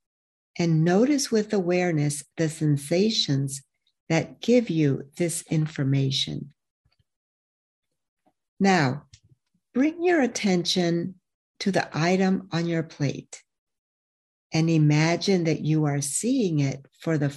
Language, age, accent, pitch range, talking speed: English, 60-79, American, 145-210 Hz, 105 wpm